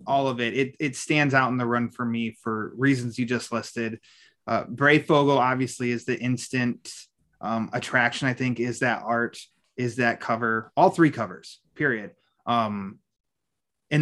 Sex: male